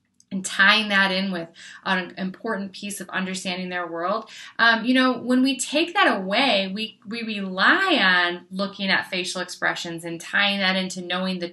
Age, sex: 20-39, female